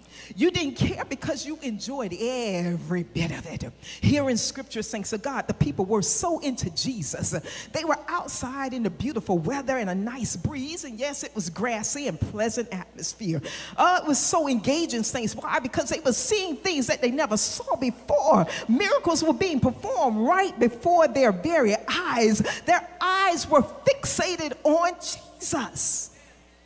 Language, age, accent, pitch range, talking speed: English, 40-59, American, 210-305 Hz, 165 wpm